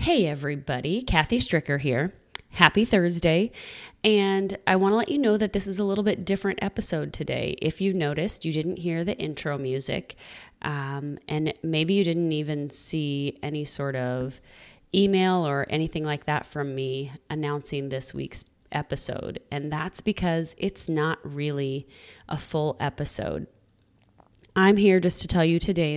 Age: 20-39